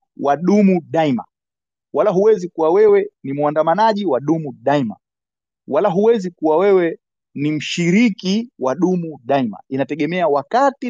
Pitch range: 150-215 Hz